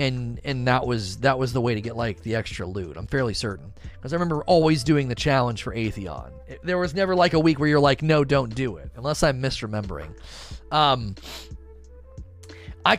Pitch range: 110-160 Hz